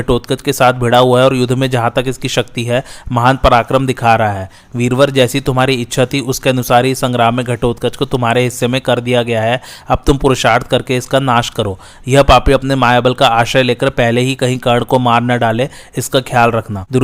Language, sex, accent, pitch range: Hindi, male, native, 120-135 Hz